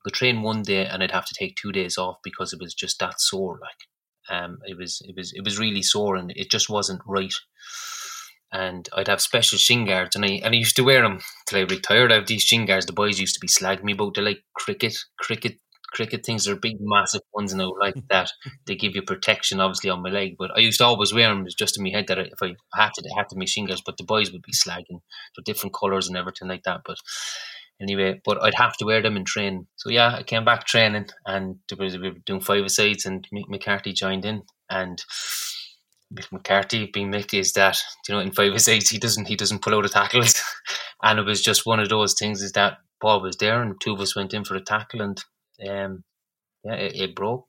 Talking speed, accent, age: 250 wpm, Irish, 20-39